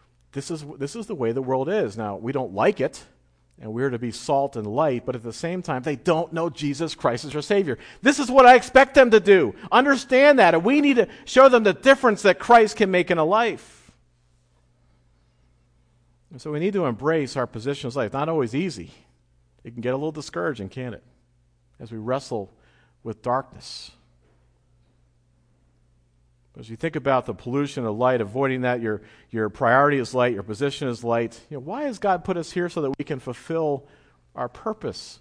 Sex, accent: male, American